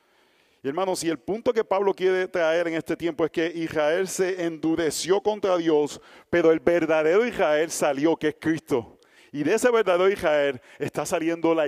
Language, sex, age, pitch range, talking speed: Spanish, male, 40-59, 150-190 Hz, 175 wpm